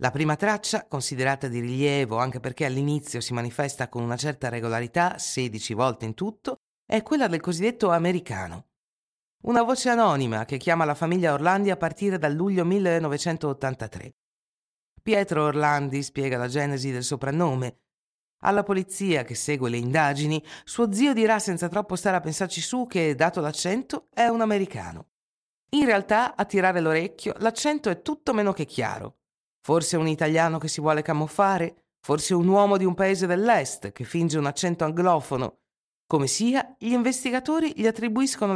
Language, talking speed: Italian, 155 wpm